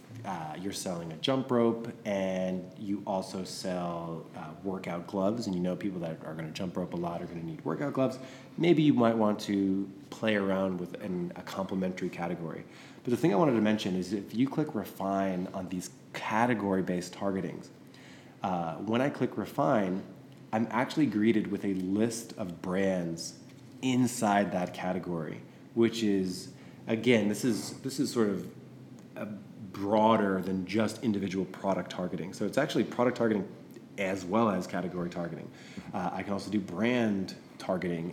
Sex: male